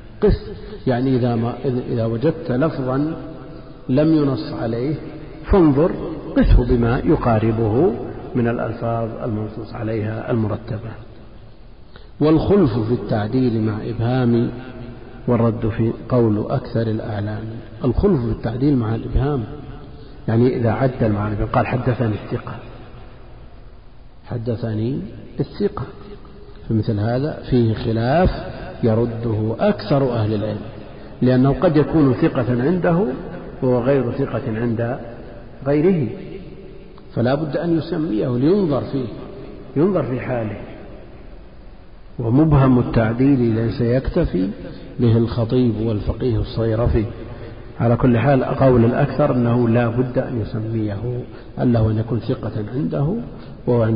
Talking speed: 100 wpm